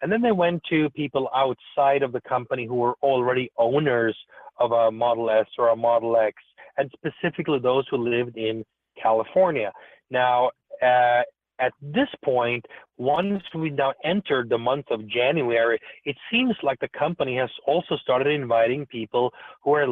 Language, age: English, 30-49